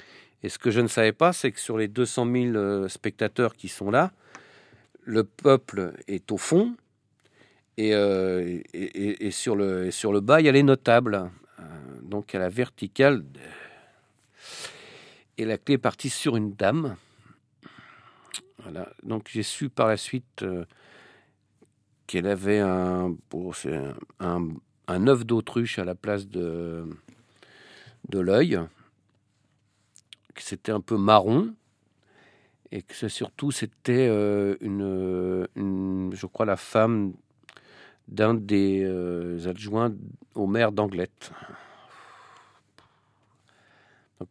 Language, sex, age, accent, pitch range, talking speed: French, male, 50-69, French, 100-130 Hz, 130 wpm